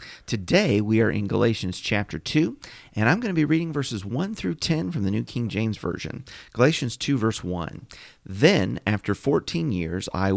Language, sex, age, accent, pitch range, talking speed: English, male, 40-59, American, 100-155 Hz, 185 wpm